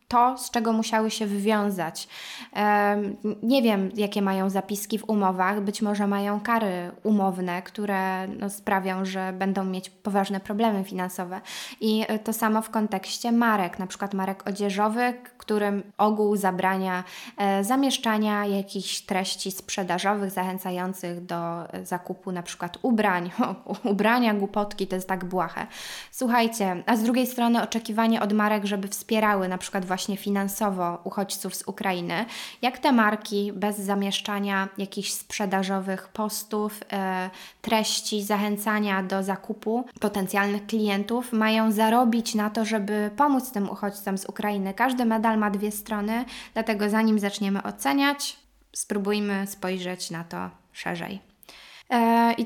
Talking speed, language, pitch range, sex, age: 130 wpm, Polish, 195-220 Hz, female, 20-39